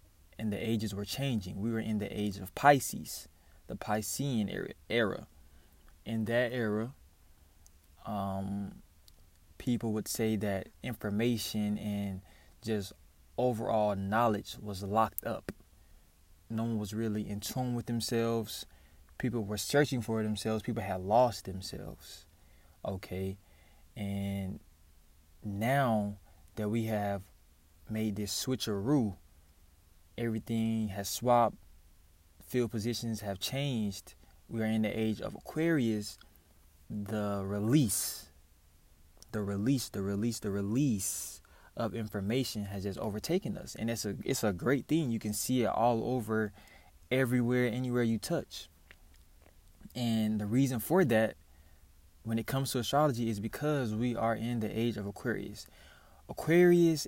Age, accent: 20-39, American